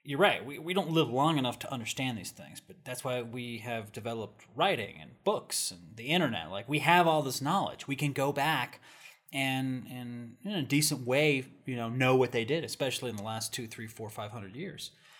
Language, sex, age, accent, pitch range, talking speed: English, male, 20-39, American, 120-155 Hz, 220 wpm